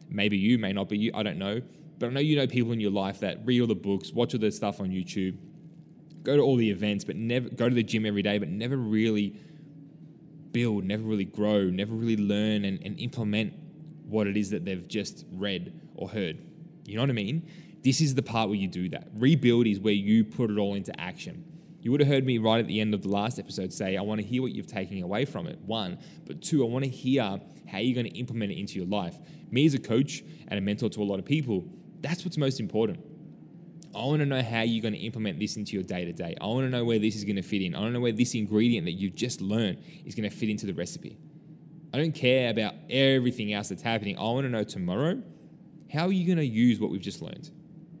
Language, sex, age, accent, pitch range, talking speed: English, male, 10-29, Australian, 105-145 Hz, 260 wpm